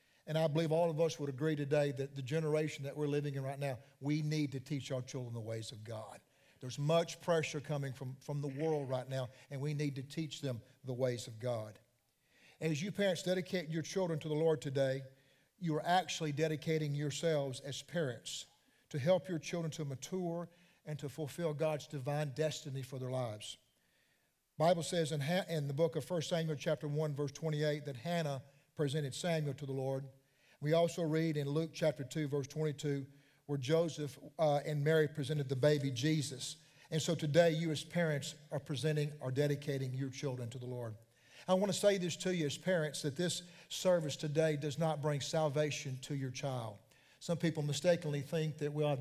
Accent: American